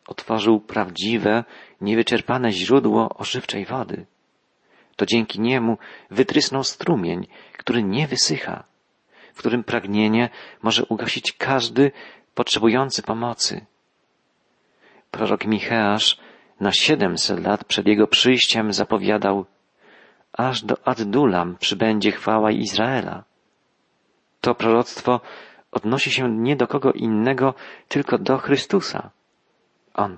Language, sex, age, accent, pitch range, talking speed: Polish, male, 40-59, native, 105-130 Hz, 95 wpm